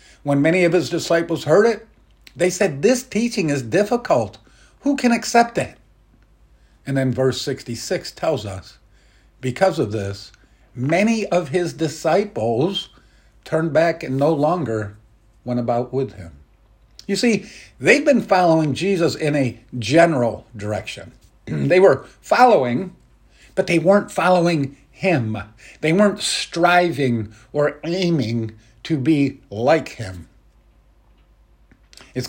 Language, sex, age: English, male, 50-69